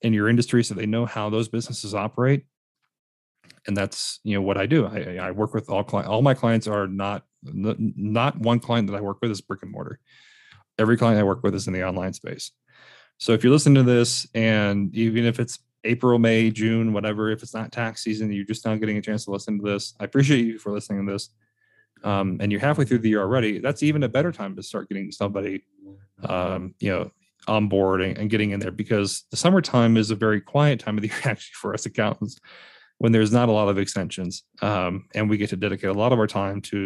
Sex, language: male, English